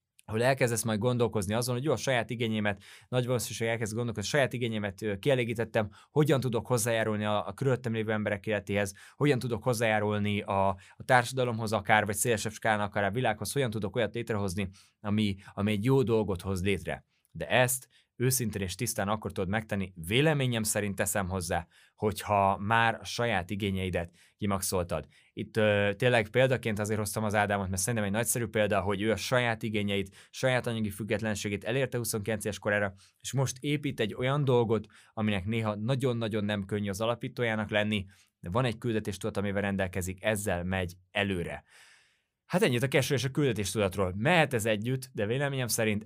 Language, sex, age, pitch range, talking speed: Hungarian, male, 20-39, 100-120 Hz, 170 wpm